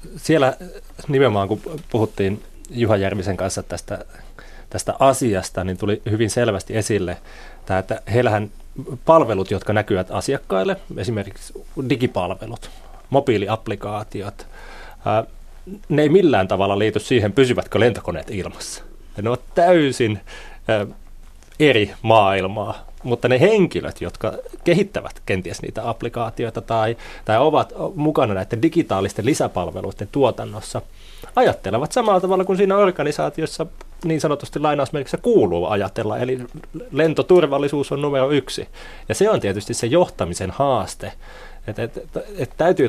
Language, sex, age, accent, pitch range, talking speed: Finnish, male, 30-49, native, 100-140 Hz, 115 wpm